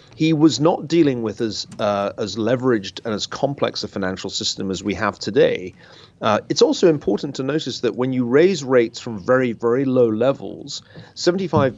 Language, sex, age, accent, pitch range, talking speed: English, male, 40-59, British, 110-145 Hz, 185 wpm